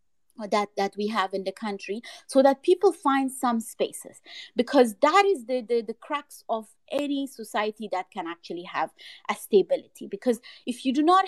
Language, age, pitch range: English, 30-49, 200-255 Hz